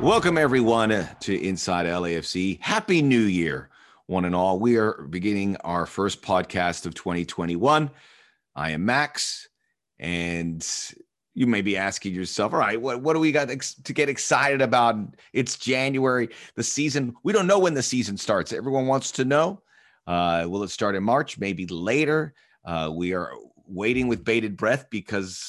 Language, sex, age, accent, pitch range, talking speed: English, male, 30-49, American, 95-130 Hz, 165 wpm